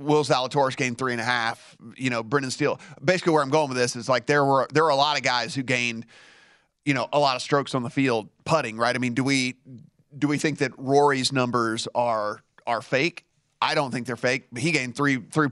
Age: 30-49